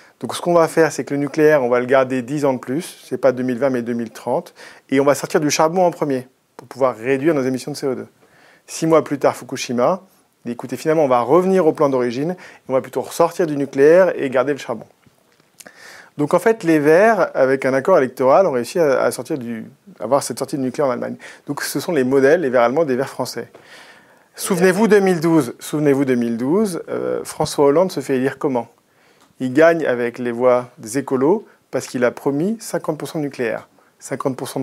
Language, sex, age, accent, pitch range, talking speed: French, male, 40-59, French, 125-155 Hz, 210 wpm